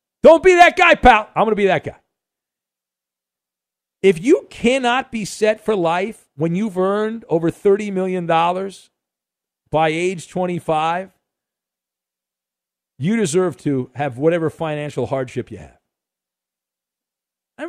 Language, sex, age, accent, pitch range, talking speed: English, male, 50-69, American, 140-215 Hz, 125 wpm